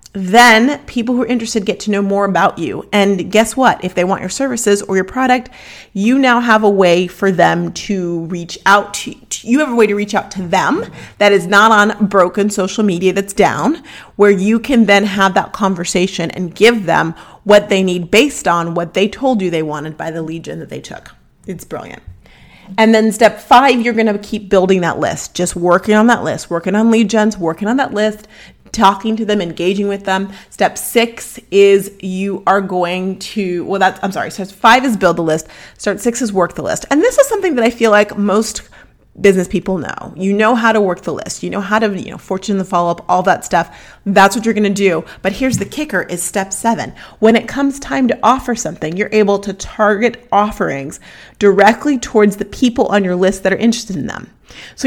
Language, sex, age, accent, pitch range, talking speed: English, female, 30-49, American, 185-230 Hz, 225 wpm